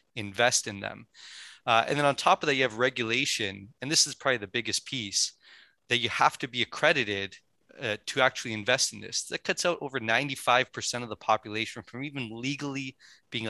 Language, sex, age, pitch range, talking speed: English, male, 20-39, 110-130 Hz, 195 wpm